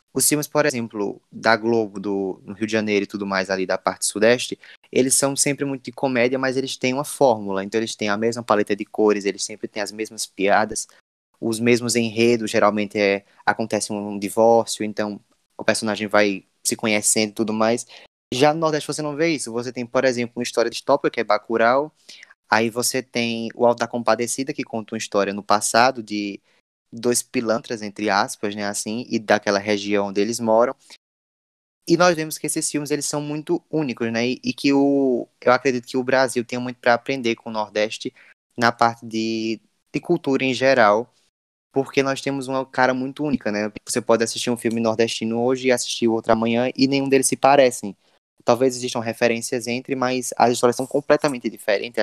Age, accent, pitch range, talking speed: 20-39, Brazilian, 105-130 Hz, 200 wpm